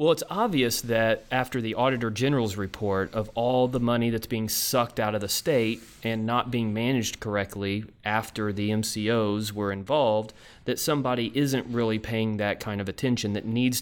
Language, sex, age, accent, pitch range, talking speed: English, male, 30-49, American, 100-120 Hz, 180 wpm